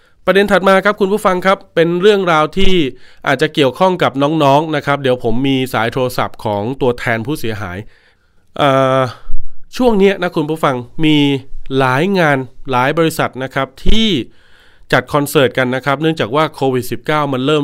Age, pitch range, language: 20-39, 125-155 Hz, Thai